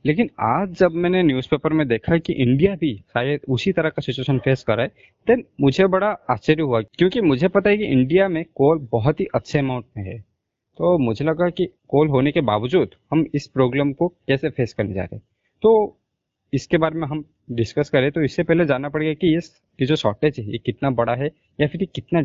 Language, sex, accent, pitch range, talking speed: Hindi, male, native, 120-160 Hz, 215 wpm